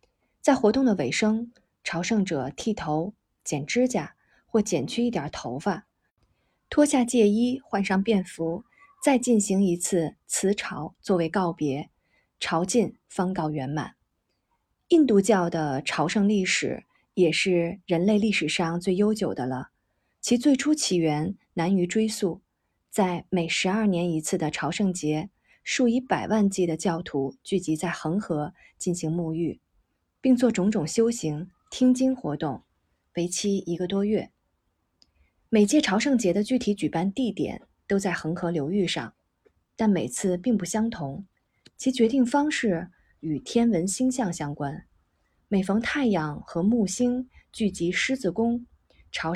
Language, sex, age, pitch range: Chinese, female, 20-39, 165-230 Hz